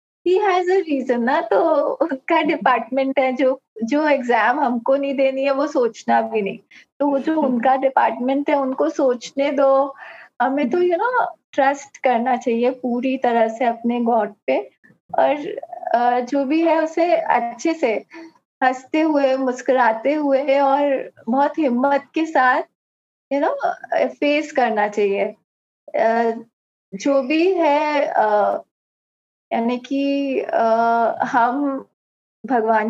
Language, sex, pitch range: English, female, 245-290 Hz